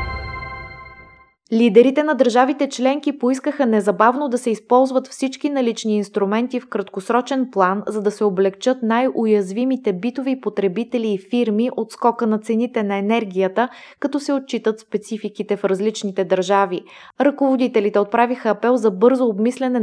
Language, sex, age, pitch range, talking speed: Bulgarian, female, 20-39, 200-240 Hz, 130 wpm